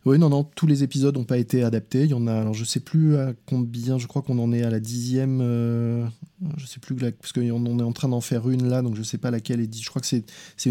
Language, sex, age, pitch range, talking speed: French, male, 20-39, 115-140 Hz, 315 wpm